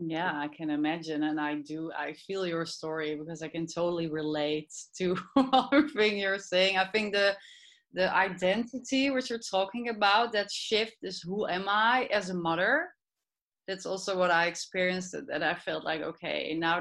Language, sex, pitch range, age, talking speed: English, female, 165-200 Hz, 30-49, 180 wpm